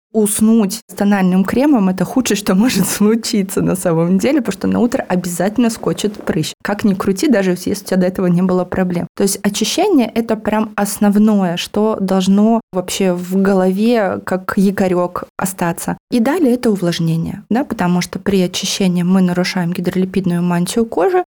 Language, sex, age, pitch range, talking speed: Russian, female, 20-39, 185-225 Hz, 165 wpm